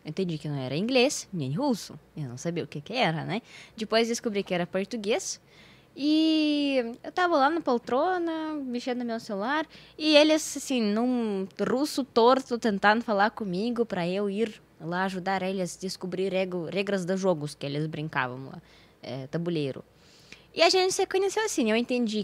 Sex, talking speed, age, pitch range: female, 180 wpm, 20-39, 175-250 Hz